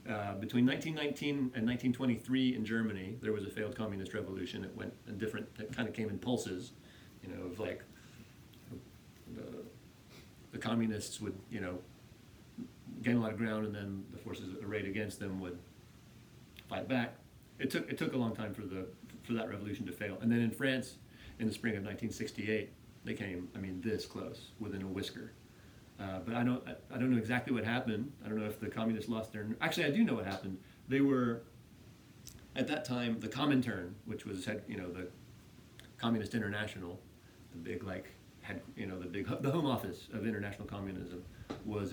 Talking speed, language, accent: 190 wpm, English, American